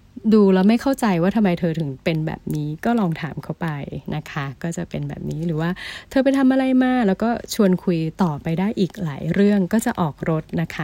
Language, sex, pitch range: Thai, female, 160-195 Hz